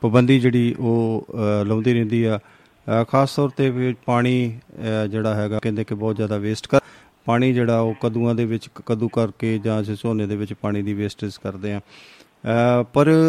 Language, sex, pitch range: Punjabi, male, 110-130 Hz